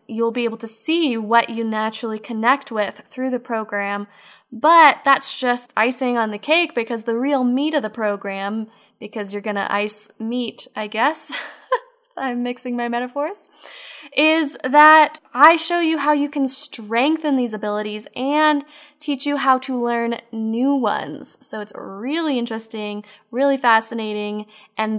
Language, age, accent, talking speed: English, 10-29, American, 155 wpm